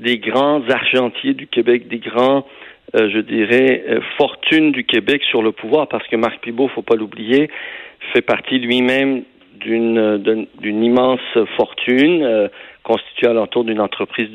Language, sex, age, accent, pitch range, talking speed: French, male, 50-69, French, 110-140 Hz, 165 wpm